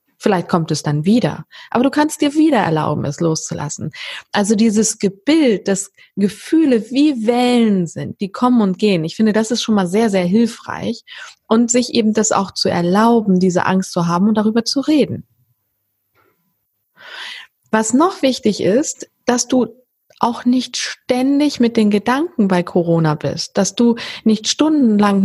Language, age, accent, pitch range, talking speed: German, 20-39, German, 190-250 Hz, 160 wpm